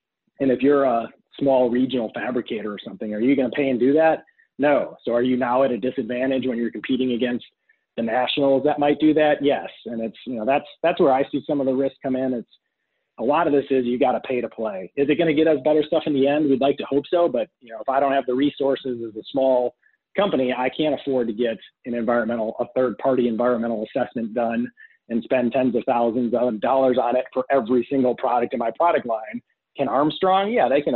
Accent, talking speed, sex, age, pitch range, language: American, 245 wpm, male, 30-49, 120-140 Hz, English